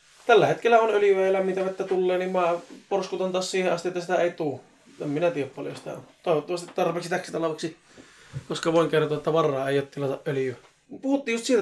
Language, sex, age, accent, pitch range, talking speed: Finnish, male, 20-39, native, 145-180 Hz, 190 wpm